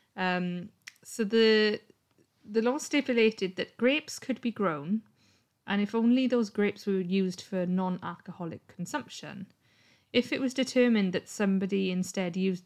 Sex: female